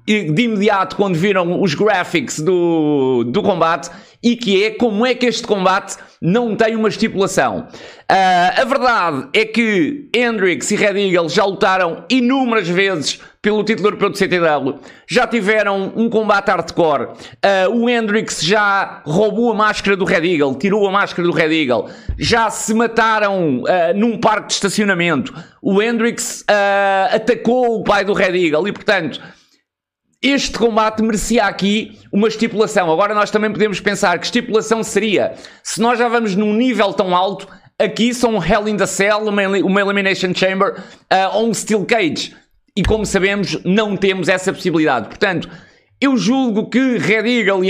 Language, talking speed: Portuguese, 165 wpm